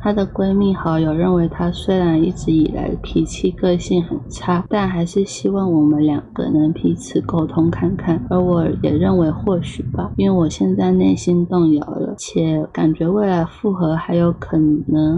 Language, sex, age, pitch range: Chinese, female, 20-39, 150-185 Hz